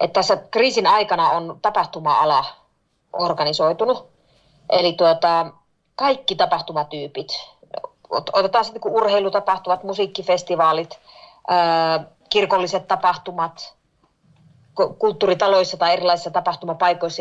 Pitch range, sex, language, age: 155-195 Hz, female, Finnish, 30-49